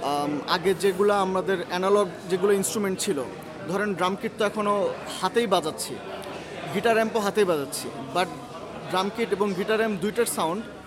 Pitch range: 185-230 Hz